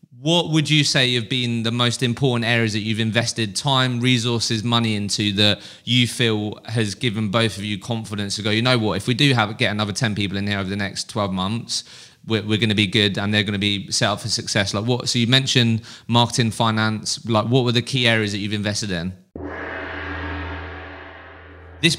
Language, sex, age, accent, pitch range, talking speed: English, male, 20-39, British, 100-120 Hz, 210 wpm